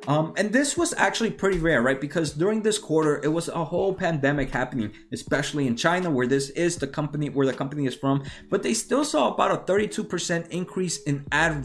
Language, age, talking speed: English, 20-39, 215 wpm